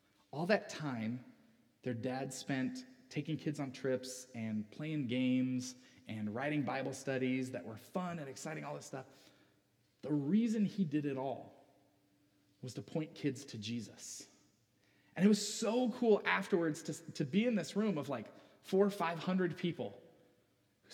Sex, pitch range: male, 125-175 Hz